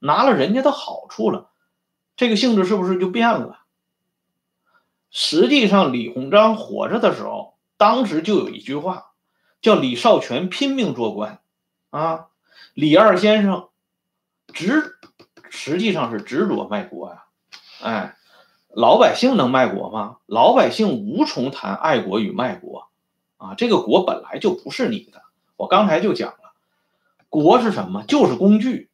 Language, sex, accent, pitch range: Swedish, male, Chinese, 160-250 Hz